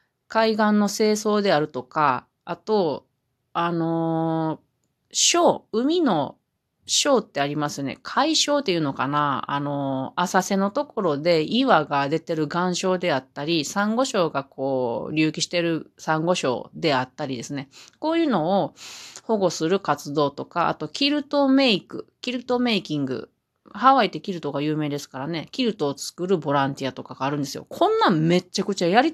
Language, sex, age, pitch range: Japanese, female, 30-49, 150-240 Hz